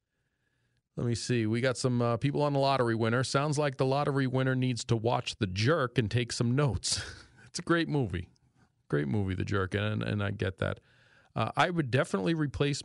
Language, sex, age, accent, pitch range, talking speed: English, male, 40-59, American, 110-135 Hz, 205 wpm